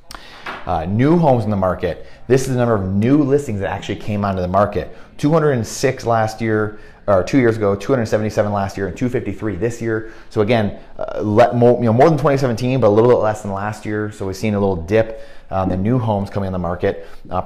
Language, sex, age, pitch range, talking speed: English, male, 30-49, 95-115 Hz, 225 wpm